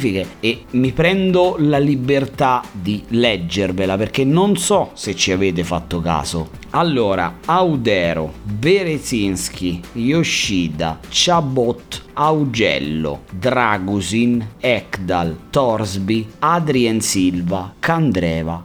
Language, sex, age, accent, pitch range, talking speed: Italian, male, 30-49, native, 100-150 Hz, 85 wpm